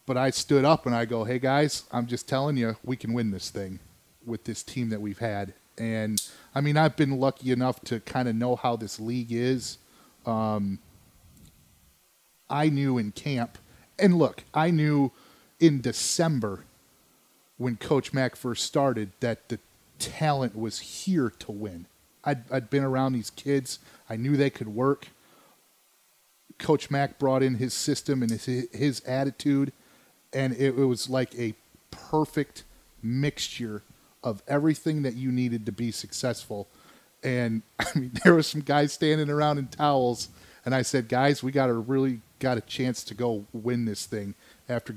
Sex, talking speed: male, 170 wpm